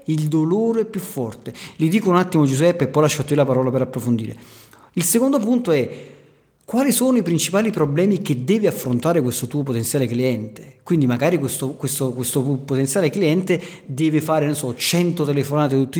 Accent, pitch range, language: native, 135-165 Hz, Italian